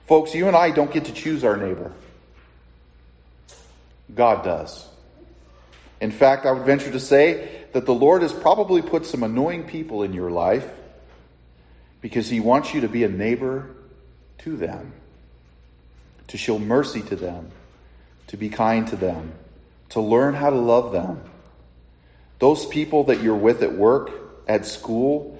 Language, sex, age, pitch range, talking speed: English, male, 40-59, 80-130 Hz, 155 wpm